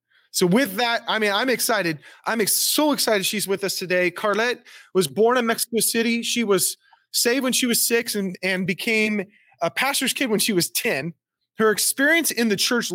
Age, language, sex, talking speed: 30-49, English, male, 195 wpm